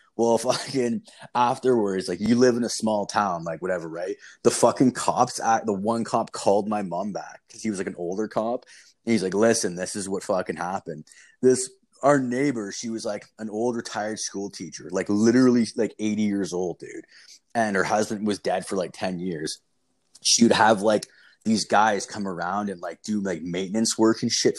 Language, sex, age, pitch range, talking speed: English, male, 20-39, 100-120 Hz, 205 wpm